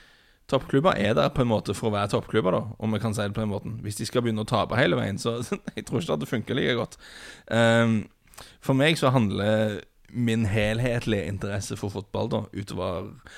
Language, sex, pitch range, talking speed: English, male, 100-115 Hz, 215 wpm